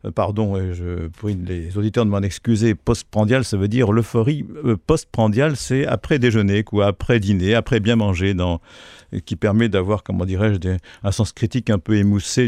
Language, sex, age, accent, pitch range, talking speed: French, male, 50-69, French, 95-115 Hz, 160 wpm